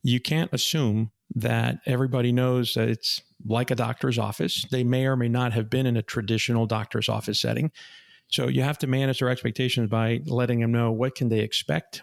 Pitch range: 115-130 Hz